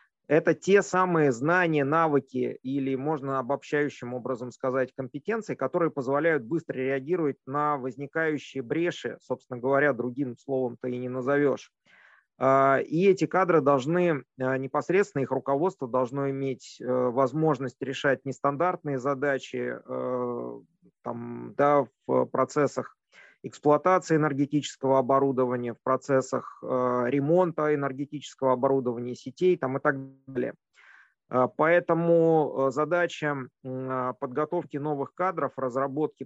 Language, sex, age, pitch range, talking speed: Russian, male, 30-49, 130-155 Hz, 100 wpm